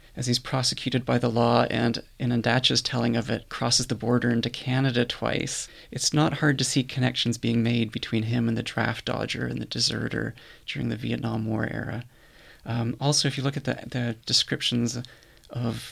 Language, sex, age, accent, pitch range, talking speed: English, male, 30-49, American, 115-140 Hz, 190 wpm